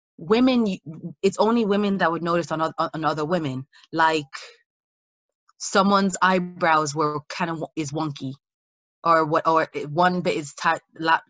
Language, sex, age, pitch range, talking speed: English, female, 20-39, 155-195 Hz, 135 wpm